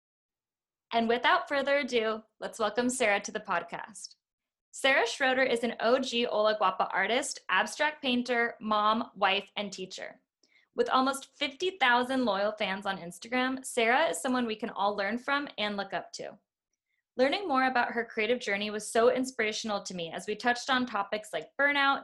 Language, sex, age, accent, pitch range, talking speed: English, female, 20-39, American, 200-250 Hz, 165 wpm